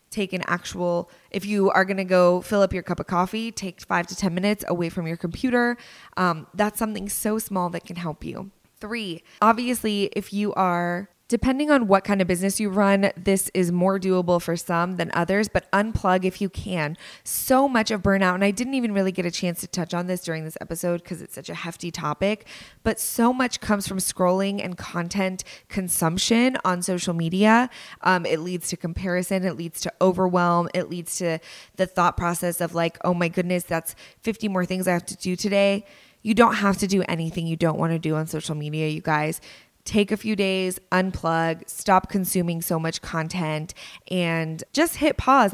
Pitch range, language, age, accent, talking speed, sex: 175-210 Hz, English, 20-39, American, 205 wpm, female